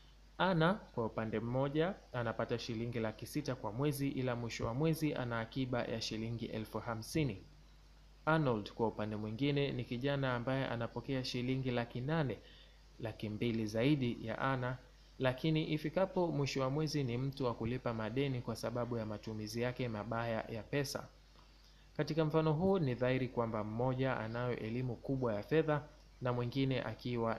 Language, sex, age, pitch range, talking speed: Swahili, male, 20-39, 110-140 Hz, 150 wpm